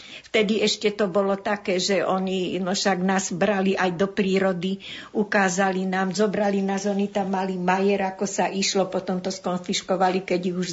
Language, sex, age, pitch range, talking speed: Slovak, female, 50-69, 185-215 Hz, 175 wpm